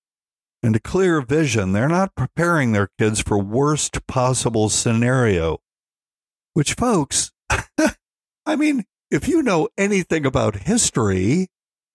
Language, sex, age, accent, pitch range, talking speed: English, male, 60-79, American, 115-160 Hz, 115 wpm